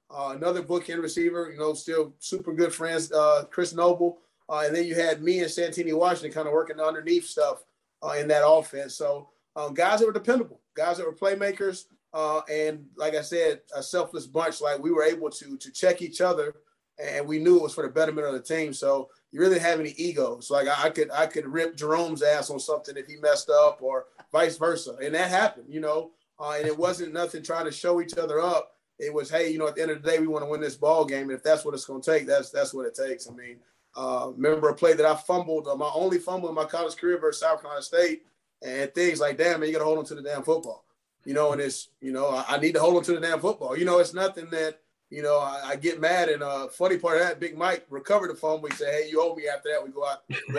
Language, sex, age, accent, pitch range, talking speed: English, male, 30-49, American, 150-180 Hz, 270 wpm